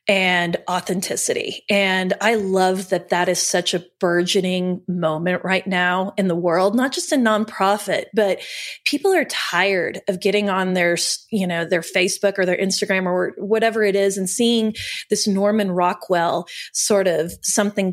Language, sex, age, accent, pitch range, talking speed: English, female, 30-49, American, 180-210 Hz, 160 wpm